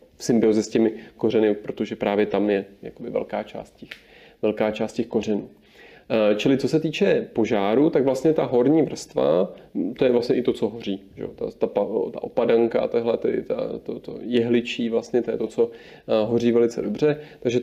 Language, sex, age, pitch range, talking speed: Czech, male, 30-49, 110-125 Hz, 175 wpm